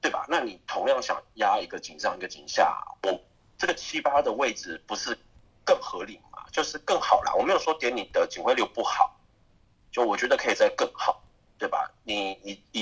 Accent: native